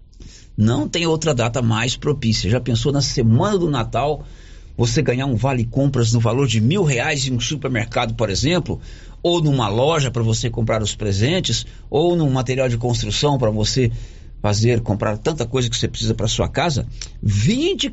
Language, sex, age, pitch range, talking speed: Portuguese, male, 50-69, 110-150 Hz, 175 wpm